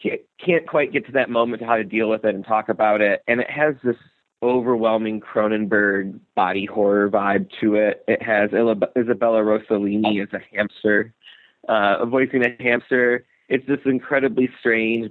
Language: English